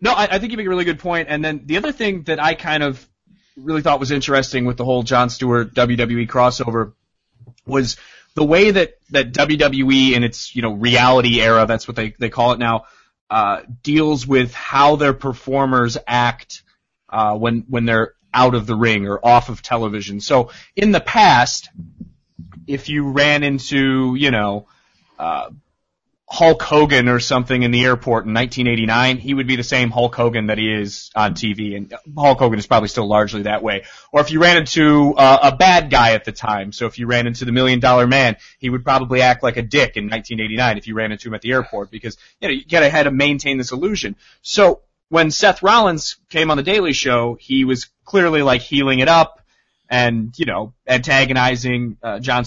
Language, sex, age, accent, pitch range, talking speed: English, male, 30-49, American, 115-145 Hz, 205 wpm